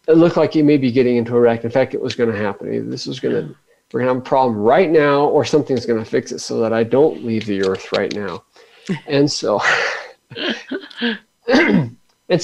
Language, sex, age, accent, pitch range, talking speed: English, male, 50-69, American, 125-180 Hz, 225 wpm